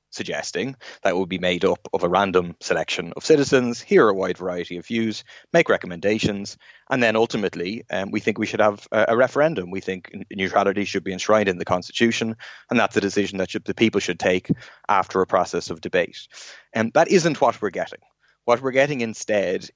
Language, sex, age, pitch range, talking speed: English, male, 30-49, 95-120 Hz, 205 wpm